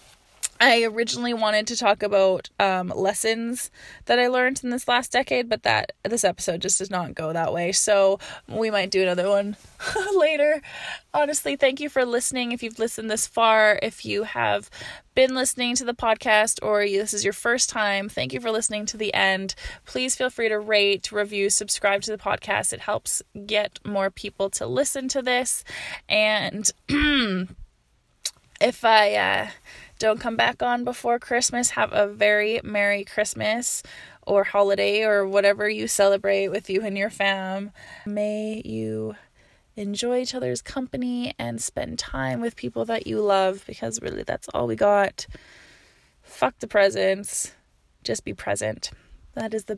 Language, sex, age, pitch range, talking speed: English, female, 20-39, 200-240 Hz, 165 wpm